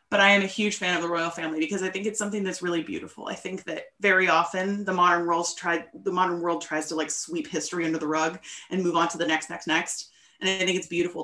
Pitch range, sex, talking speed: 170-205 Hz, female, 270 wpm